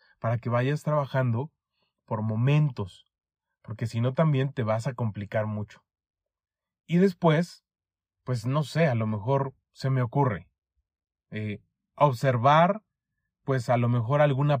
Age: 30-49